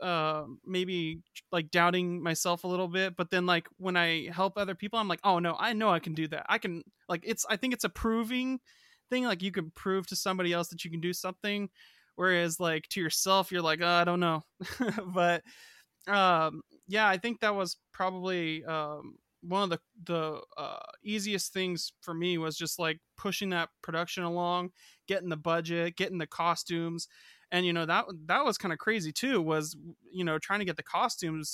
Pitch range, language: 165-200 Hz, English